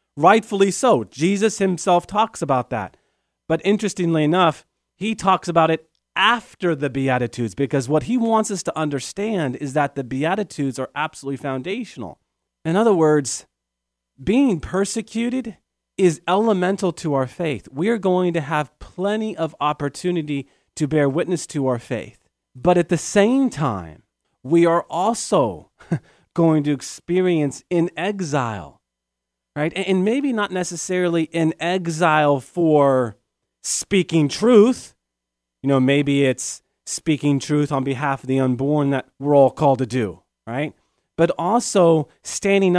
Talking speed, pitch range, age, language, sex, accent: 140 wpm, 140-185 Hz, 40-59, English, male, American